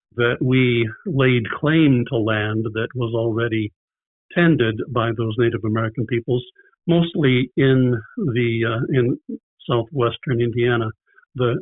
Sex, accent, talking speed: male, American, 120 wpm